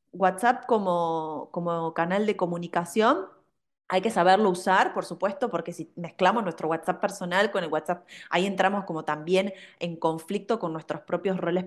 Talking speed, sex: 160 wpm, female